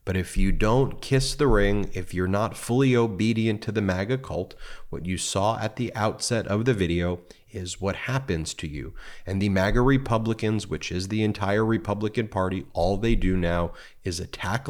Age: 30-49